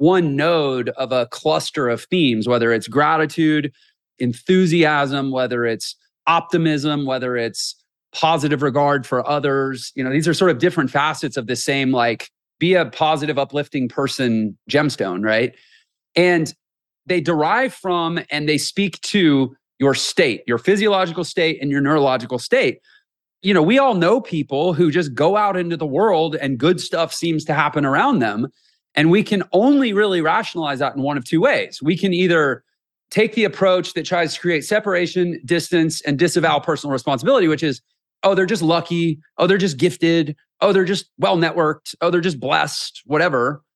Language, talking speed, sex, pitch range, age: English, 170 wpm, male, 145-180 Hz, 30-49